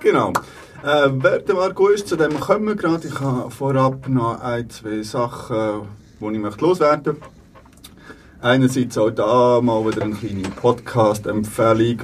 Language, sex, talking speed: German, male, 150 wpm